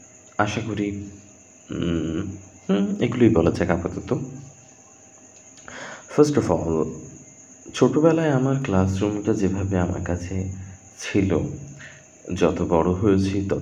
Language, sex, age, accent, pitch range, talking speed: English, male, 30-49, Indian, 90-120 Hz, 95 wpm